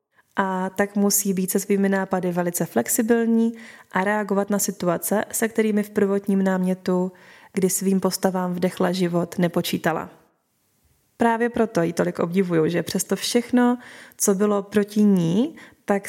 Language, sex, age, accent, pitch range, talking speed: Czech, female, 20-39, native, 185-215 Hz, 140 wpm